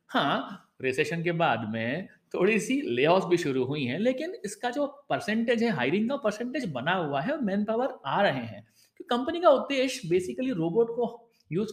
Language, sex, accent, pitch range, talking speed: Hindi, male, native, 150-230 Hz, 180 wpm